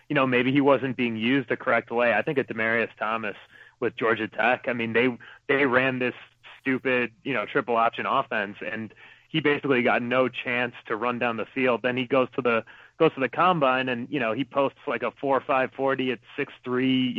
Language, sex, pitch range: English, male, 115-135 Hz